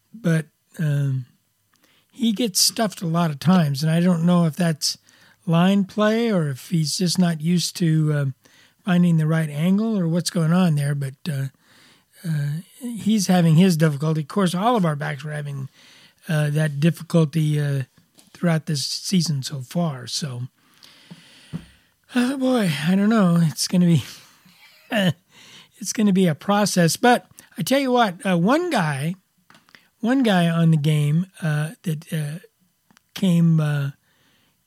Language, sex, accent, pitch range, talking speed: English, male, American, 155-185 Hz, 160 wpm